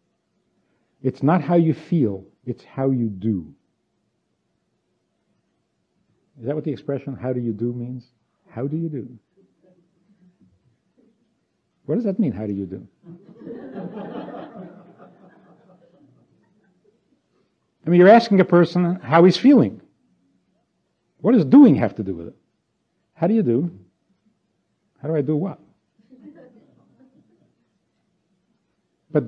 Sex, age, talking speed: male, 60-79, 120 wpm